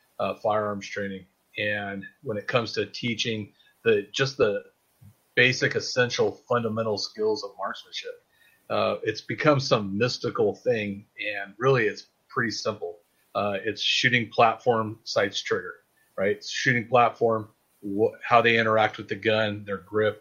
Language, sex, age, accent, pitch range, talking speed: English, male, 30-49, American, 105-130 Hz, 145 wpm